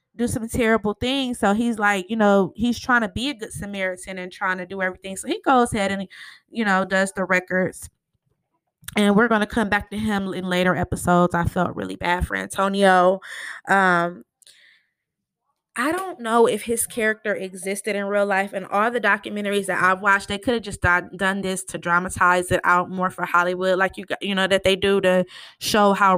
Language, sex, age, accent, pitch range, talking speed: English, female, 20-39, American, 190-225 Hz, 205 wpm